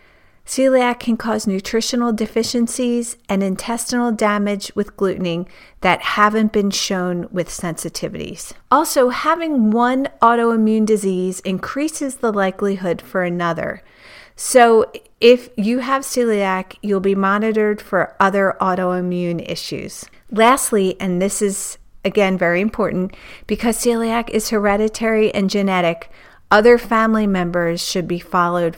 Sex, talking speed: female, 120 wpm